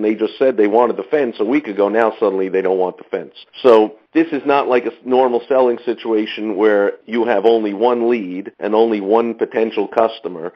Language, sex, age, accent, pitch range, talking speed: English, male, 50-69, American, 100-140 Hz, 210 wpm